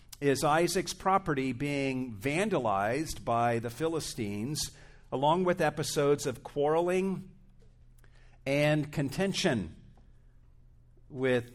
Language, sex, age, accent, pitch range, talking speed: English, male, 50-69, American, 115-150 Hz, 85 wpm